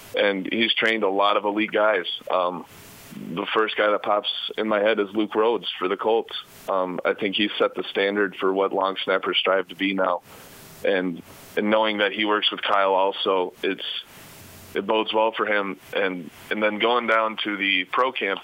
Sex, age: male, 20-39